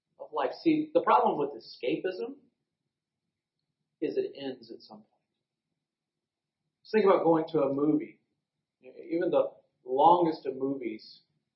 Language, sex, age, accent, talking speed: English, male, 40-59, American, 125 wpm